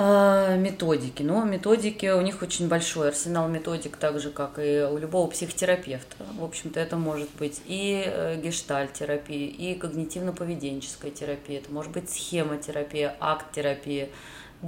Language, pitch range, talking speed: Russian, 150-185 Hz, 130 wpm